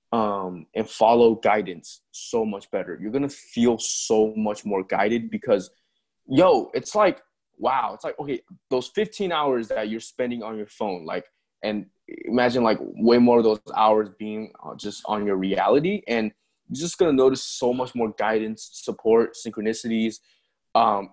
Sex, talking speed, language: male, 160 wpm, English